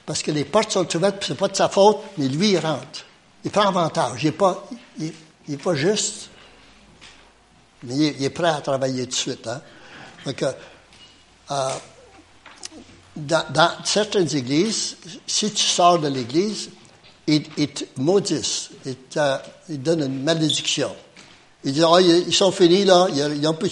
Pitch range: 145-190 Hz